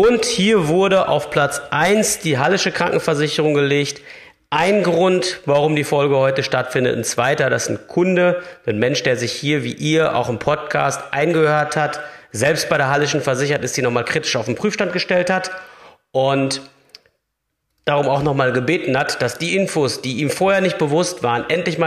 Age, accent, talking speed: 40-59, German, 180 wpm